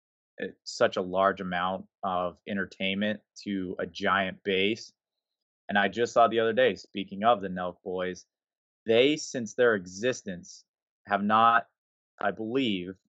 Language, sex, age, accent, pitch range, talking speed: English, male, 20-39, American, 95-110 Hz, 140 wpm